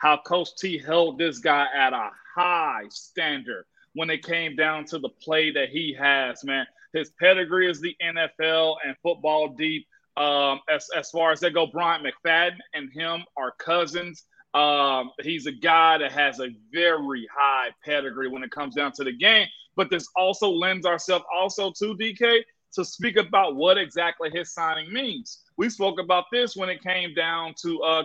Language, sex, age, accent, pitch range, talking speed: English, male, 30-49, American, 160-195 Hz, 180 wpm